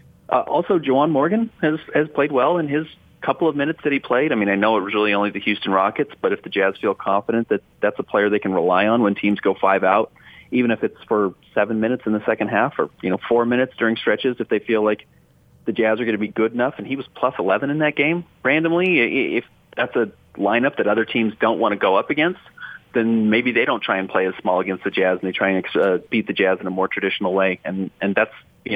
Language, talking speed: English, 265 wpm